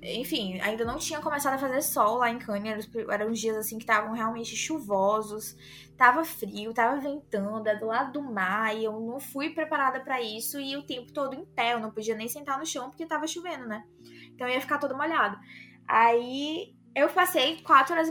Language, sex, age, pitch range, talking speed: Portuguese, female, 10-29, 230-310 Hz, 210 wpm